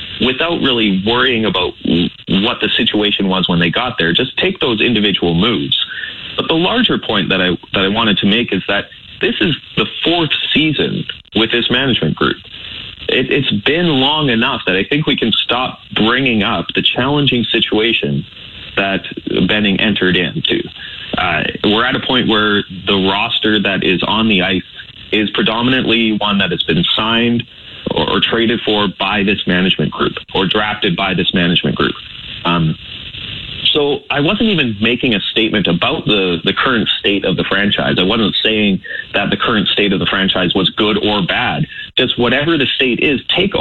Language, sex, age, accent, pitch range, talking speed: English, male, 30-49, American, 95-135 Hz, 180 wpm